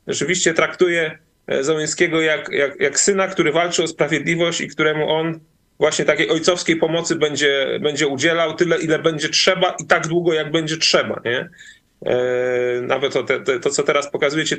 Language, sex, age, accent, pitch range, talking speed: Polish, male, 30-49, native, 150-175 Hz, 150 wpm